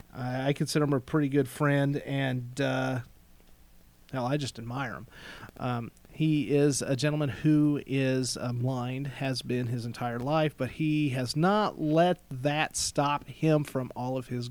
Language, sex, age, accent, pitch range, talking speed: English, male, 40-59, American, 130-185 Hz, 160 wpm